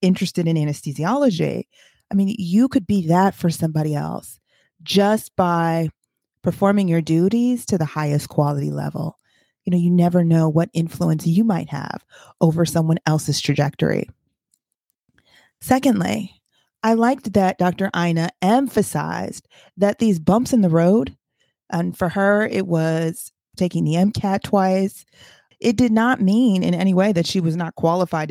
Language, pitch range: English, 160-205 Hz